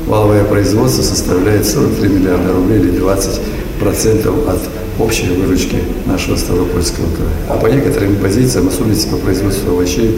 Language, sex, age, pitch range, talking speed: Russian, male, 60-79, 90-110 Hz, 130 wpm